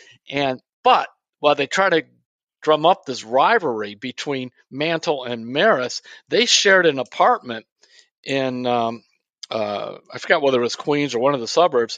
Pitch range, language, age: 130-185 Hz, English, 50-69